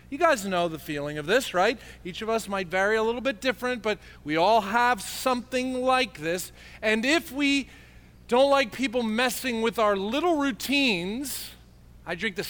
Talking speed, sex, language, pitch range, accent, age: 180 wpm, male, English, 185-270 Hz, American, 40-59